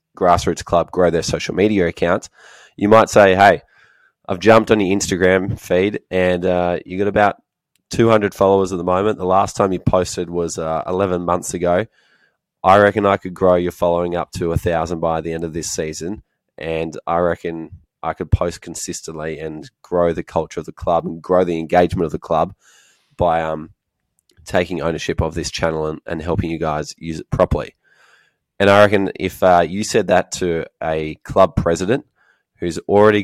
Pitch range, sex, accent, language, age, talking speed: 80-100 Hz, male, Australian, English, 20-39, 190 wpm